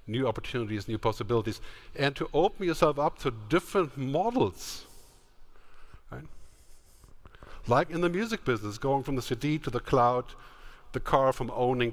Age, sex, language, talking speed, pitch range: 50-69, male, English, 145 wpm, 120-185 Hz